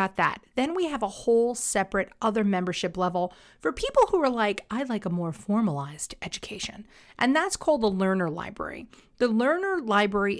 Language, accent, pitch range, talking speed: English, American, 185-245 Hz, 175 wpm